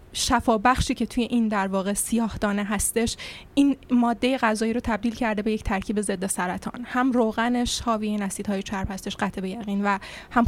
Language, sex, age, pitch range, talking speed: Persian, female, 20-39, 210-240 Hz, 180 wpm